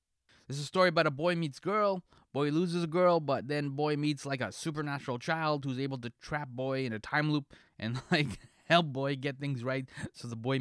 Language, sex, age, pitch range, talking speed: English, male, 20-39, 125-165 Hz, 225 wpm